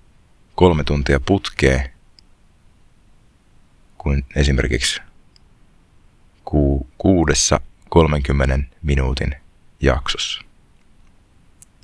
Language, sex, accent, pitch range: Finnish, male, native, 70-85 Hz